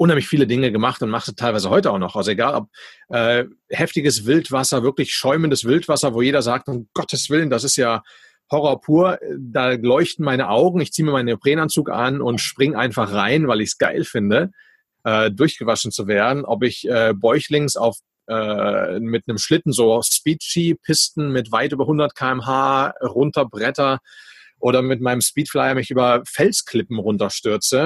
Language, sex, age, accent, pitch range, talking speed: German, male, 30-49, German, 120-155 Hz, 165 wpm